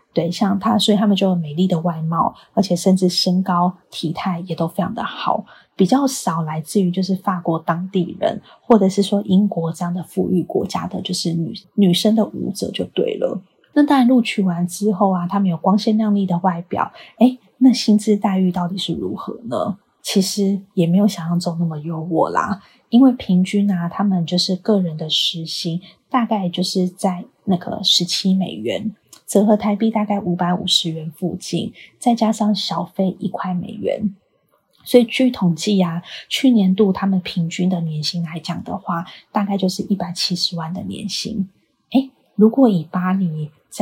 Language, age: Chinese, 20-39